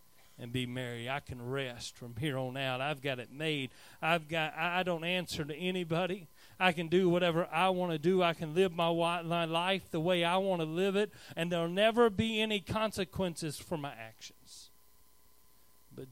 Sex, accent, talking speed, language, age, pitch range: male, American, 200 wpm, English, 40-59, 105-170 Hz